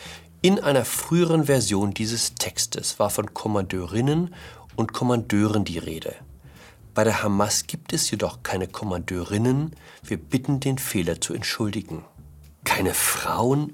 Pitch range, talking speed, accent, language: 95-150 Hz, 125 wpm, German, German